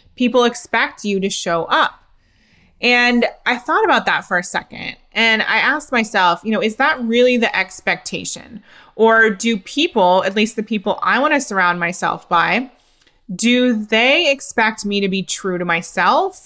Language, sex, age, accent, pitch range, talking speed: English, female, 20-39, American, 185-235 Hz, 170 wpm